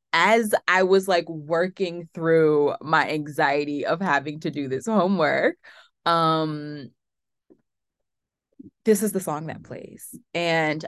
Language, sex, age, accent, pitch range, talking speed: English, female, 20-39, American, 145-210 Hz, 120 wpm